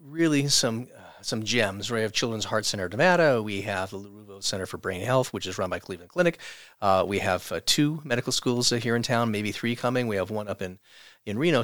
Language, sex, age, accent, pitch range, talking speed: English, male, 40-59, American, 100-125 Hz, 240 wpm